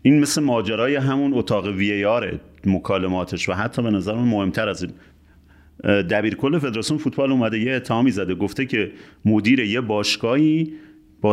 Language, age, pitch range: Persian, 40-59, 105-140 Hz